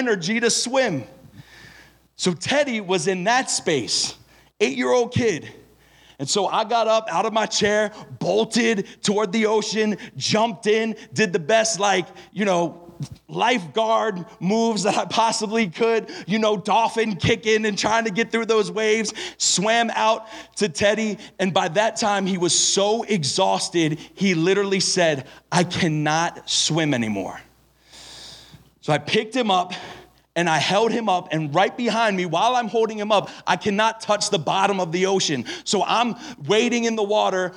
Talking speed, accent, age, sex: 160 wpm, American, 30-49, male